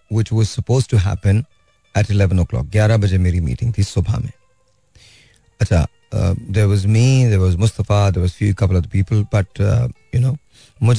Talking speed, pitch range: 155 wpm, 100-120 Hz